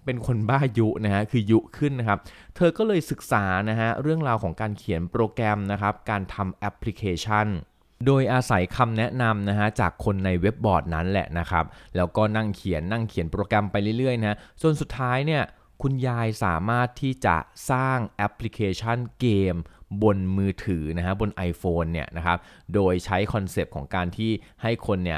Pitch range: 90-110 Hz